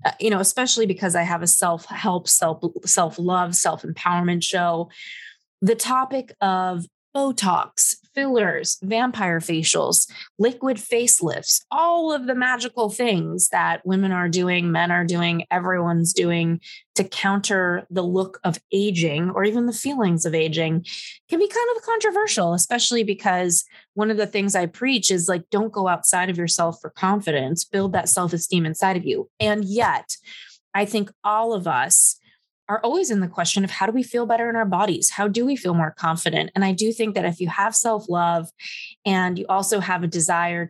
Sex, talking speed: female, 180 wpm